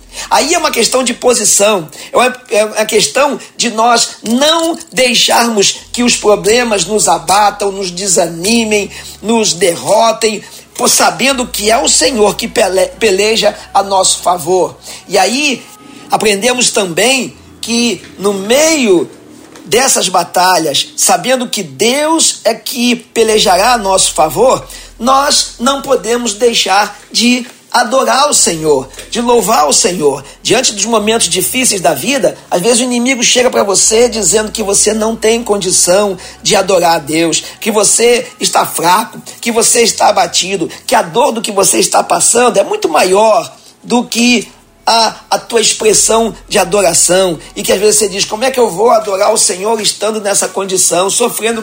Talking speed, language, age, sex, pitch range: 150 wpm, Portuguese, 50-69, male, 200-240 Hz